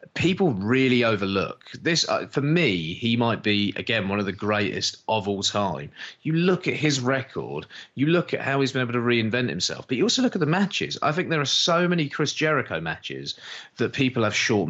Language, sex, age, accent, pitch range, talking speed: English, male, 30-49, British, 100-140 Hz, 215 wpm